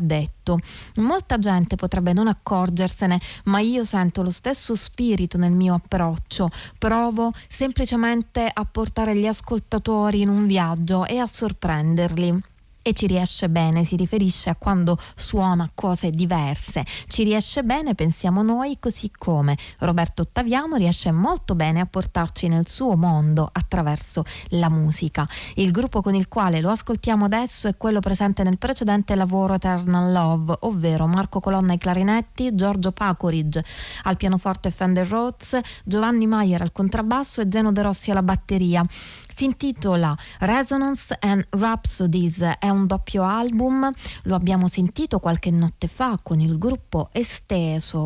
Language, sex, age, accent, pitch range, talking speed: Italian, female, 20-39, native, 170-210 Hz, 140 wpm